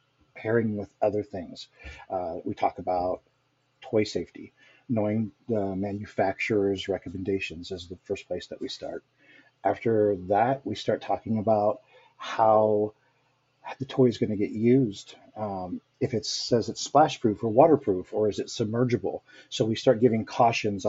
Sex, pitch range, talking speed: male, 100-130 Hz, 150 wpm